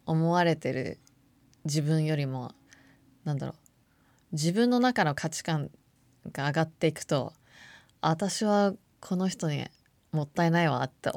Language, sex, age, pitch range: Japanese, female, 20-39, 145-190 Hz